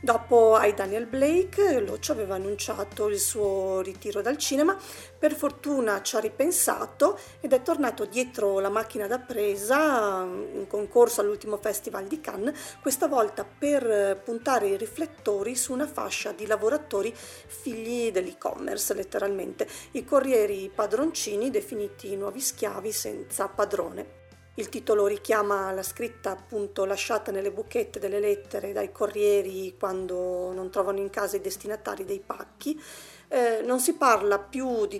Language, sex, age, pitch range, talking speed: Italian, female, 40-59, 200-275 Hz, 140 wpm